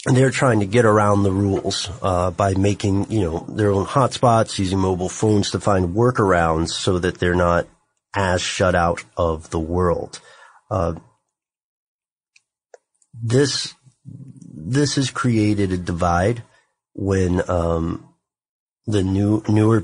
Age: 30-49